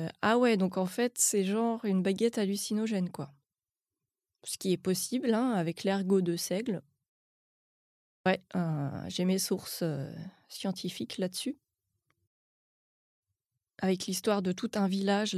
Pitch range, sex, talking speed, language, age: 175-210 Hz, female, 135 wpm, French, 20-39